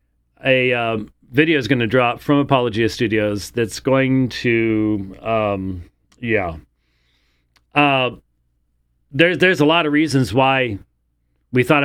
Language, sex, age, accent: English, male, 40-59, American